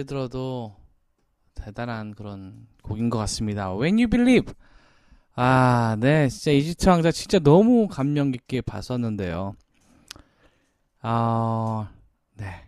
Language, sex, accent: Korean, male, native